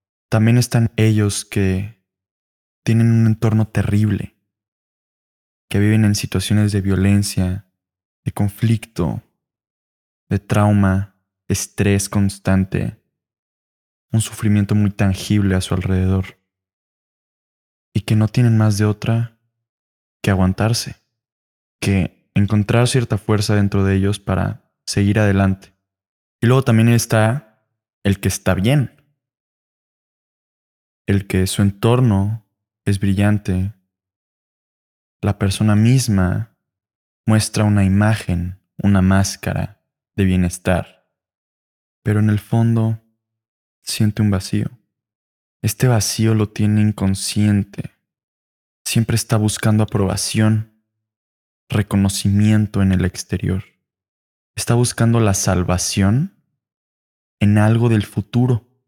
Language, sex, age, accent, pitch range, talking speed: Spanish, male, 20-39, Mexican, 95-110 Hz, 100 wpm